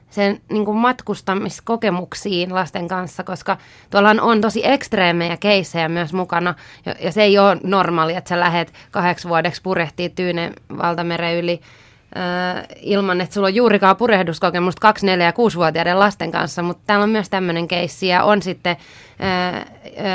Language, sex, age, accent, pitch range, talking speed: Finnish, female, 20-39, native, 175-205 Hz, 150 wpm